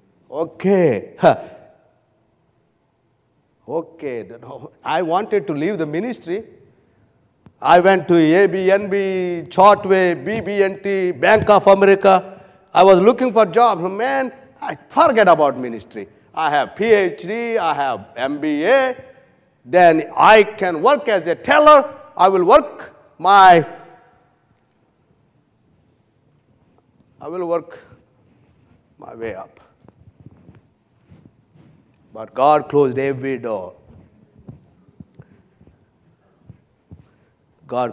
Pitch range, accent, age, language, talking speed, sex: 130-195 Hz, Indian, 50-69, English, 90 wpm, male